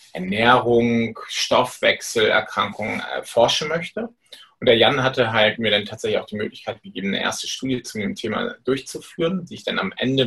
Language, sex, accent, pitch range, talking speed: German, male, German, 115-155 Hz, 175 wpm